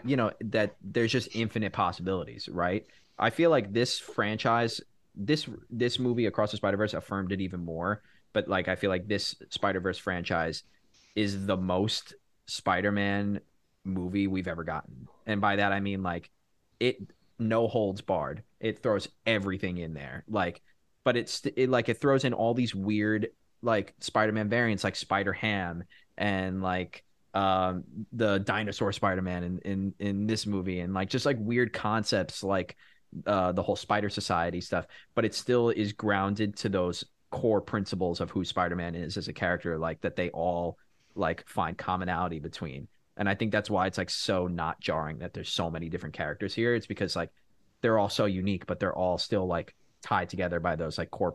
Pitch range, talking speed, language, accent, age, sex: 90-110 Hz, 180 wpm, English, American, 20-39, male